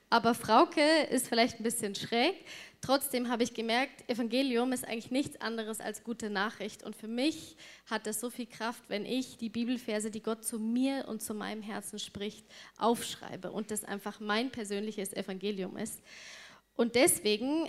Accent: German